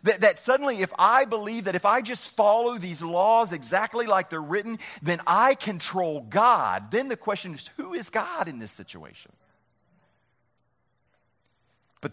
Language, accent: English, American